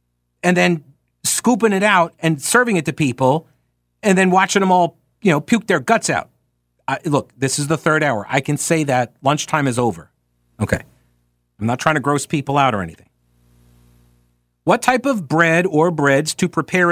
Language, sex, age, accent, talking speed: English, male, 50-69, American, 190 wpm